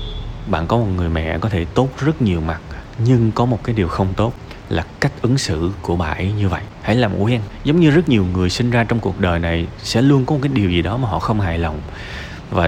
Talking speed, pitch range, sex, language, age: 260 wpm, 95-135 Hz, male, Vietnamese, 20-39